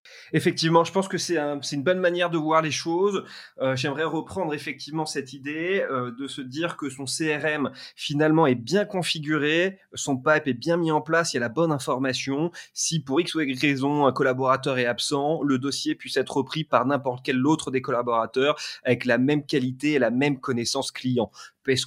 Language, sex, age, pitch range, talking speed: French, male, 20-39, 130-165 Hz, 205 wpm